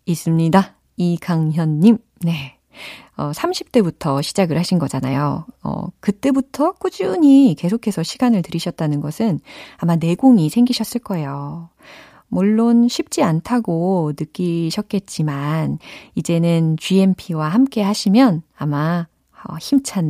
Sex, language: female, Korean